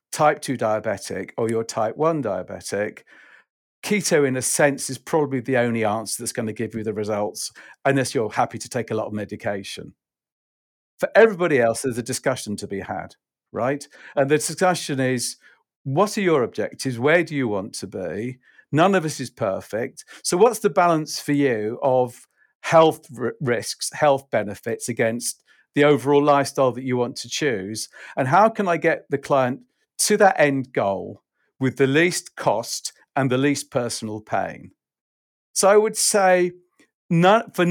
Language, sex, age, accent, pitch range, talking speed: English, male, 50-69, British, 120-165 Hz, 170 wpm